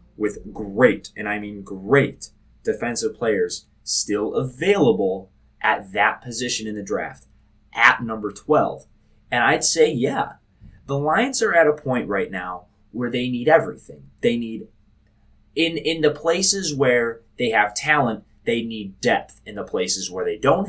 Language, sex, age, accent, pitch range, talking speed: English, male, 20-39, American, 105-150 Hz, 155 wpm